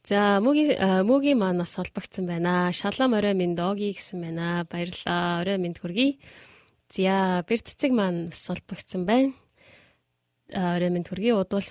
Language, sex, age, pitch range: Korean, female, 20-39, 180-225 Hz